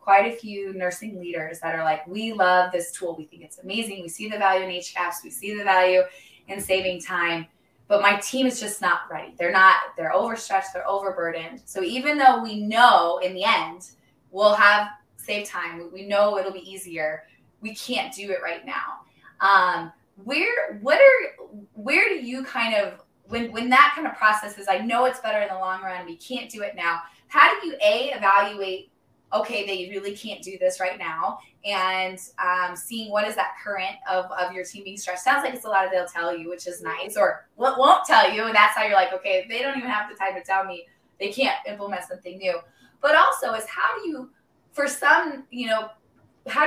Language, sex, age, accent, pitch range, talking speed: English, female, 20-39, American, 185-250 Hz, 215 wpm